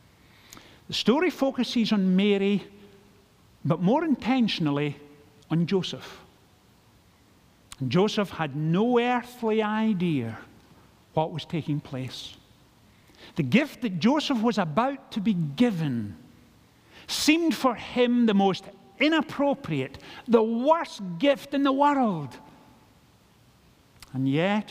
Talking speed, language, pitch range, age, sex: 100 wpm, English, 140-225 Hz, 50-69, male